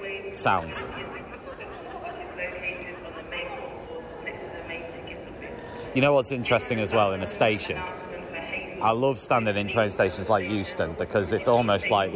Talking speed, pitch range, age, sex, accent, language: 110 wpm, 100-125 Hz, 30-49, male, British, English